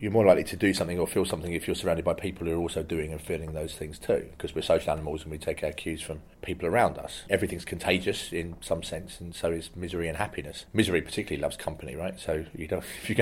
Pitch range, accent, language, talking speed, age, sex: 80-95 Hz, British, English, 260 wpm, 30-49, male